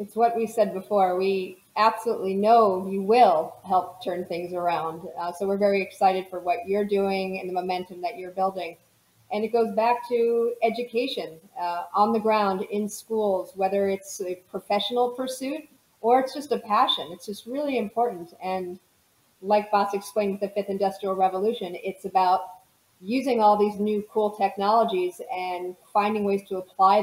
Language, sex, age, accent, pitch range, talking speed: English, female, 40-59, American, 185-225 Hz, 170 wpm